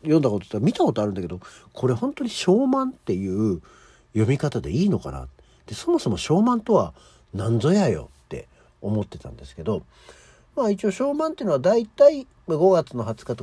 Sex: male